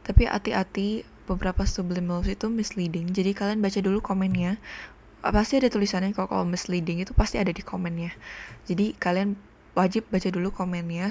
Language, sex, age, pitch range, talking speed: Indonesian, female, 20-39, 180-200 Hz, 145 wpm